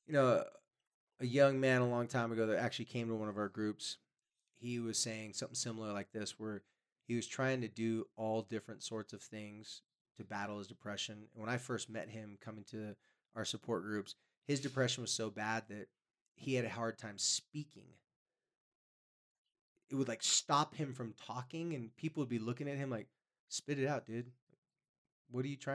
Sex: male